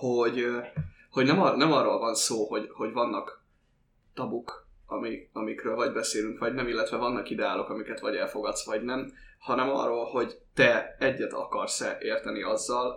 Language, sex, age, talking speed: Hungarian, male, 10-29, 150 wpm